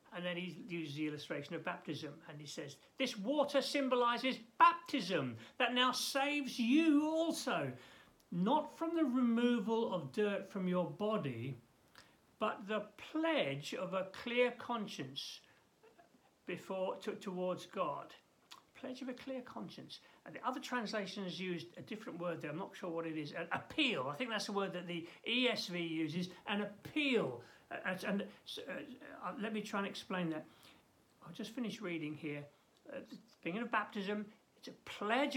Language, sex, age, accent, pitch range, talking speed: English, male, 60-79, British, 180-255 Hz, 170 wpm